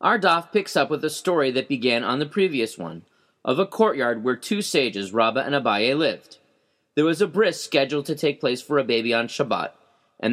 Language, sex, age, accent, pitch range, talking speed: English, male, 30-49, American, 135-185 Hz, 210 wpm